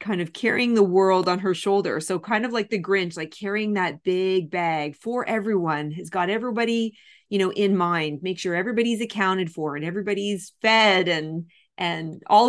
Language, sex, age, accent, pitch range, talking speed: English, female, 30-49, American, 155-190 Hz, 185 wpm